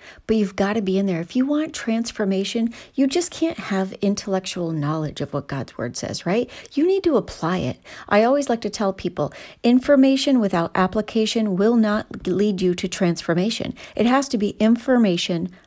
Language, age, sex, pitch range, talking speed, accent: English, 40-59, female, 180-240 Hz, 185 wpm, American